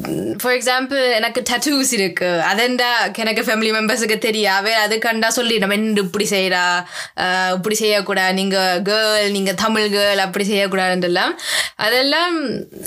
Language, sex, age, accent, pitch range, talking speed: Tamil, female, 20-39, native, 210-280 Hz, 135 wpm